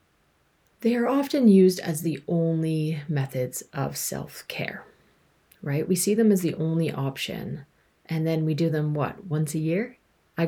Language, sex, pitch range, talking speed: English, female, 150-190 Hz, 160 wpm